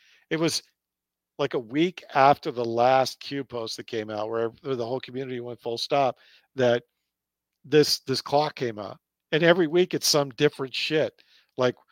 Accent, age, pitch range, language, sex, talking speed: American, 50-69, 110-175 Hz, English, male, 170 wpm